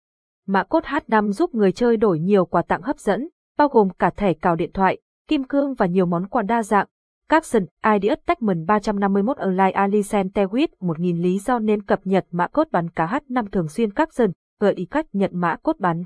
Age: 20-39